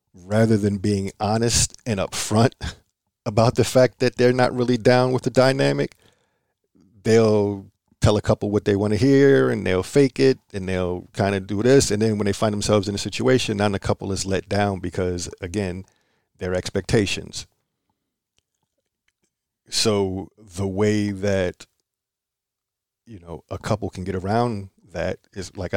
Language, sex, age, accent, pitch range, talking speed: English, male, 50-69, American, 90-110 Hz, 165 wpm